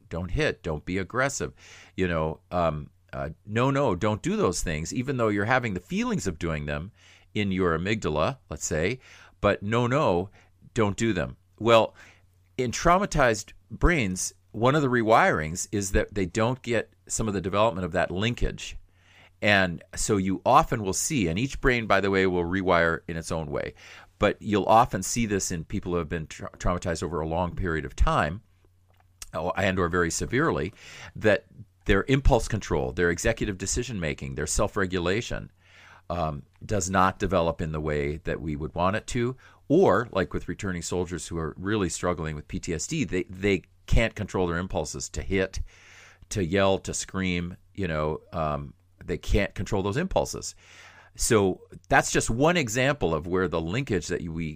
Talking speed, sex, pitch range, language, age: 175 wpm, male, 85-105 Hz, English, 50-69